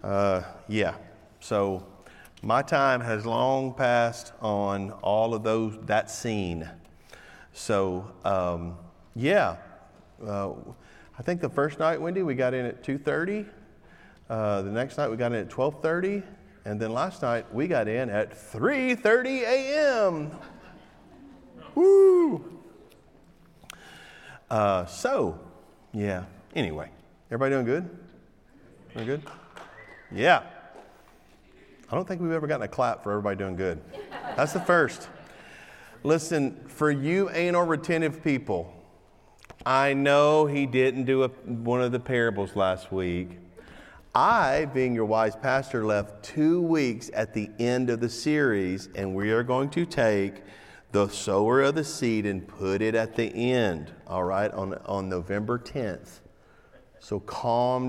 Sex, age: male, 40-59